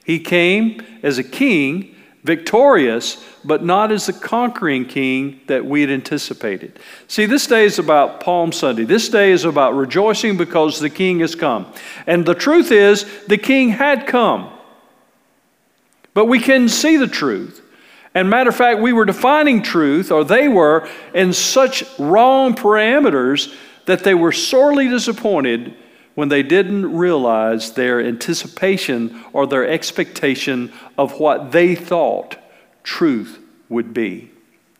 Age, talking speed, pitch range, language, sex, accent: 50-69, 145 wpm, 145-230 Hz, English, male, American